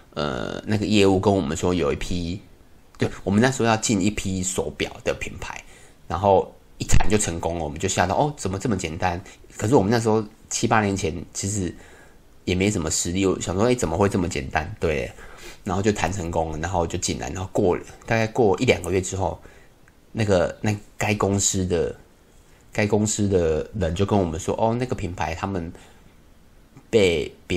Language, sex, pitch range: Chinese, male, 85-105 Hz